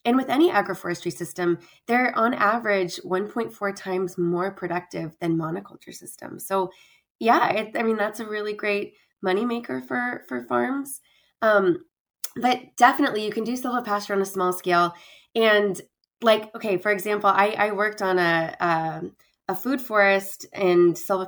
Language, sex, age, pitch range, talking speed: English, female, 20-39, 185-230 Hz, 160 wpm